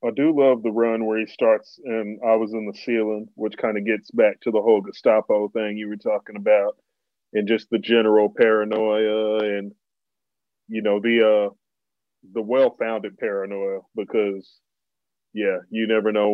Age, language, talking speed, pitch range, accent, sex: 30-49, English, 170 wpm, 105-115 Hz, American, male